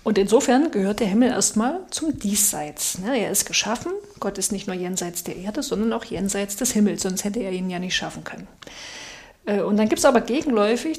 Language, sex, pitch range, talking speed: German, female, 195-230 Hz, 200 wpm